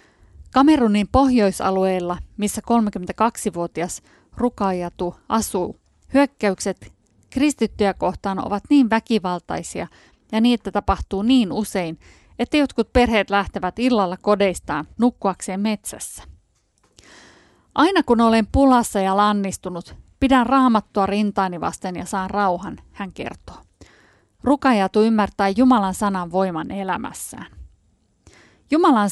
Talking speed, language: 95 wpm, Finnish